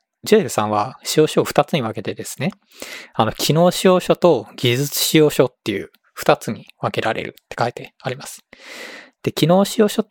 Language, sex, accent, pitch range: Japanese, male, native, 120-170 Hz